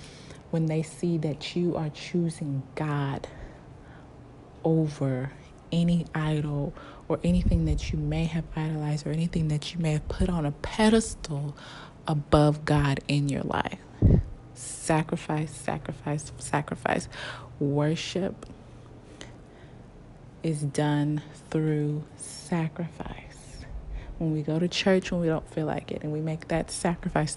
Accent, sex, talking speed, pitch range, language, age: American, female, 125 wpm, 145-170 Hz, English, 20-39